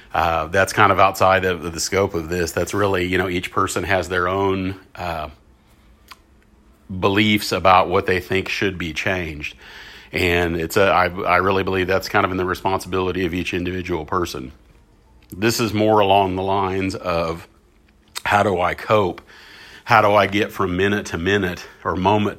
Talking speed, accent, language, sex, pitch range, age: 175 wpm, American, English, male, 90-100 Hz, 40-59